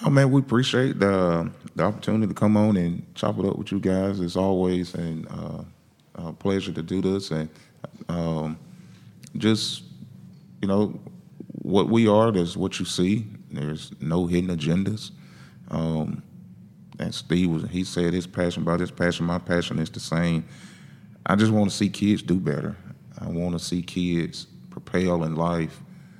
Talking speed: 170 wpm